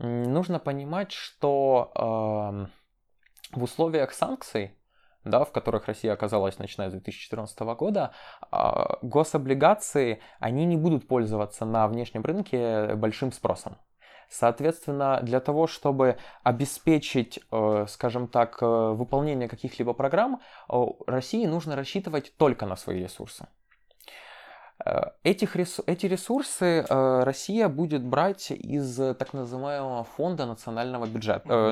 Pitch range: 115-155 Hz